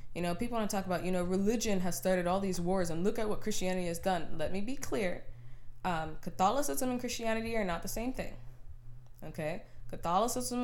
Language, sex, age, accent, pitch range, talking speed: English, female, 20-39, American, 160-215 Hz, 210 wpm